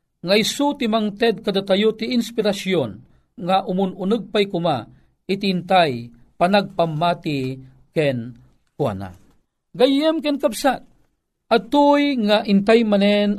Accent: native